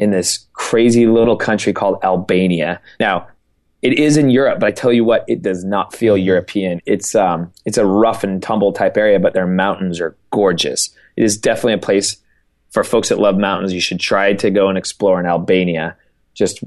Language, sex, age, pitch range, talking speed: English, male, 20-39, 90-105 Hz, 200 wpm